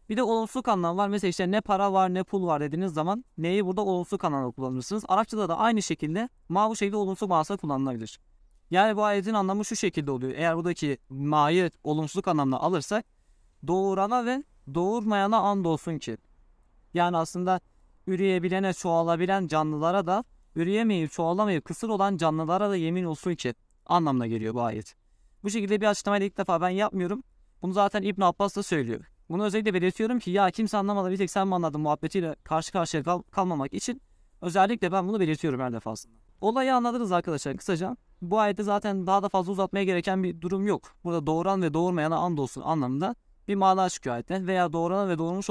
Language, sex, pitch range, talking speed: Turkish, male, 155-200 Hz, 180 wpm